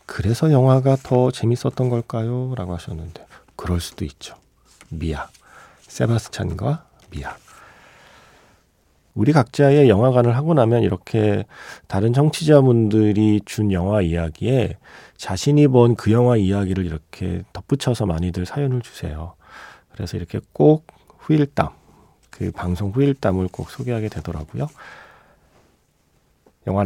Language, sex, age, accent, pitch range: Korean, male, 40-59, native, 90-135 Hz